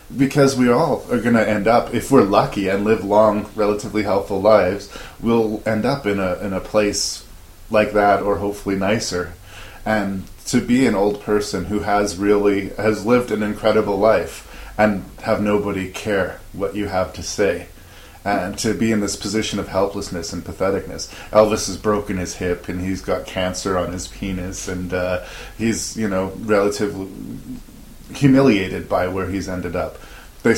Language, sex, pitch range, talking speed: English, male, 90-105 Hz, 170 wpm